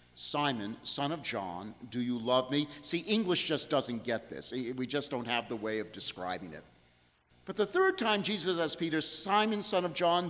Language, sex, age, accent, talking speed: English, male, 50-69, American, 200 wpm